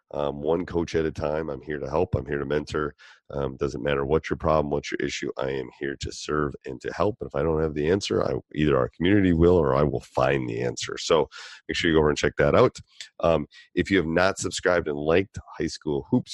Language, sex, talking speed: English, male, 255 wpm